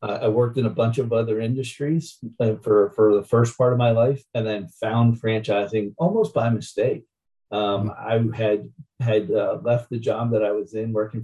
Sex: male